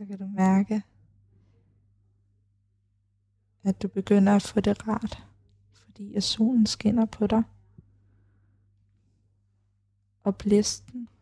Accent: native